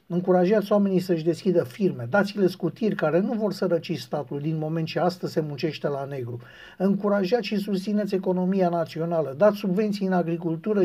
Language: Romanian